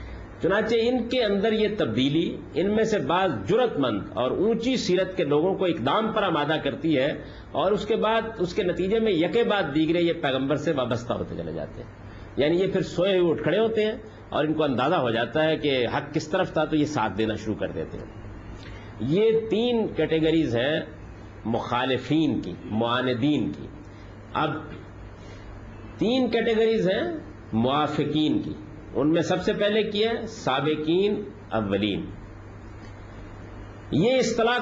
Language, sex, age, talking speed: Urdu, male, 50-69, 165 wpm